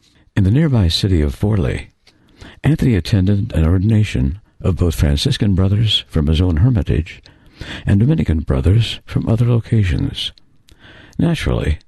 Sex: male